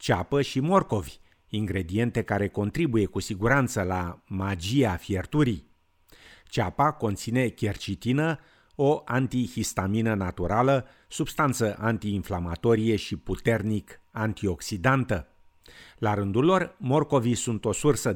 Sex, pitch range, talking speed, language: male, 95-125 Hz, 95 wpm, Romanian